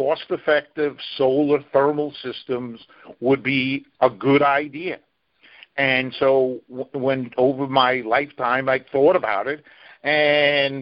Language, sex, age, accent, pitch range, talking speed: English, male, 50-69, American, 125-145 Hz, 110 wpm